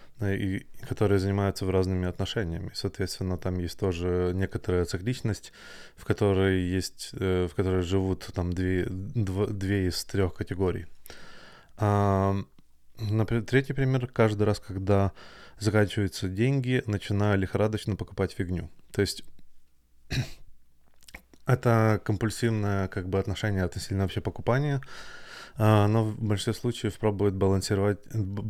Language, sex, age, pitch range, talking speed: Russian, male, 20-39, 95-110 Hz, 115 wpm